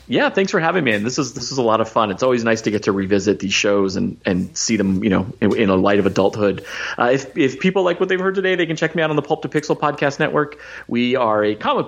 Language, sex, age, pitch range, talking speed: English, male, 30-49, 100-125 Hz, 305 wpm